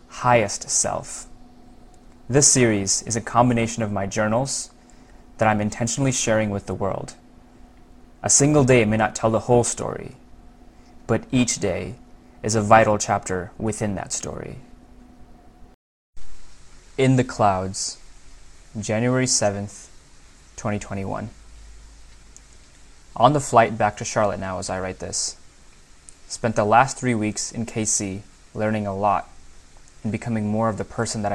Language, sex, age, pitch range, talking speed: English, male, 20-39, 95-115 Hz, 135 wpm